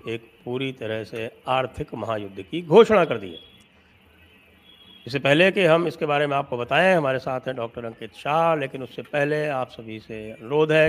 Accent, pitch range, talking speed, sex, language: Indian, 110-145 Hz, 180 wpm, male, English